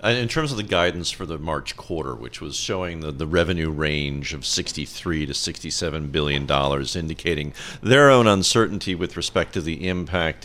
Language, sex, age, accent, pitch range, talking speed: English, male, 50-69, American, 85-110 Hz, 180 wpm